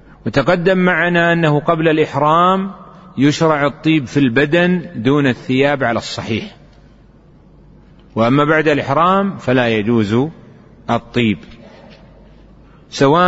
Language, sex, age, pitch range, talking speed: Arabic, male, 40-59, 120-170 Hz, 90 wpm